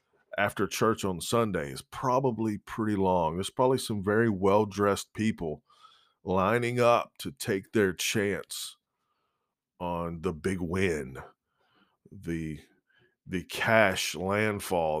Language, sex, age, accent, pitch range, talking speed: English, male, 40-59, American, 90-110 Hz, 110 wpm